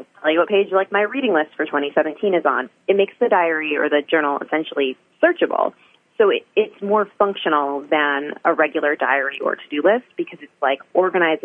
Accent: American